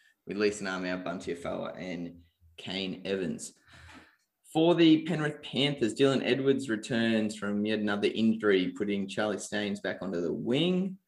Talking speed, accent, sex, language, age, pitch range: 140 wpm, Australian, male, English, 20-39, 100-125 Hz